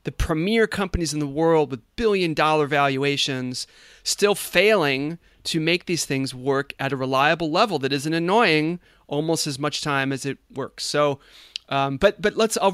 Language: English